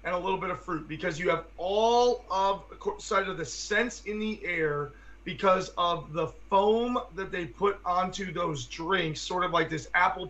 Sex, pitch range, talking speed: male, 160-195 Hz, 185 wpm